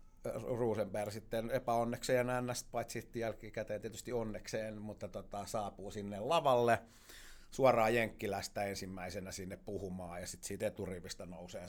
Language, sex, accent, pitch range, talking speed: Finnish, male, native, 90-120 Hz, 125 wpm